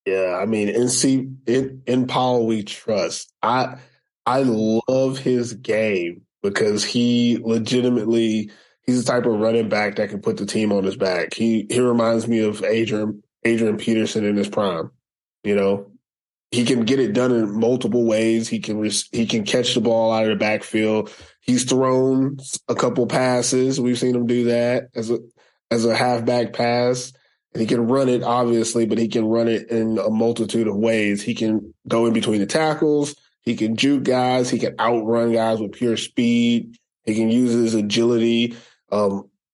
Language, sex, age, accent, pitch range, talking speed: English, male, 20-39, American, 110-125 Hz, 185 wpm